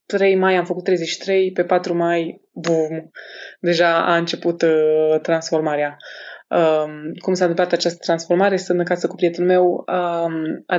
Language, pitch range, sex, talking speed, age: Romanian, 165-185 Hz, female, 150 wpm, 20-39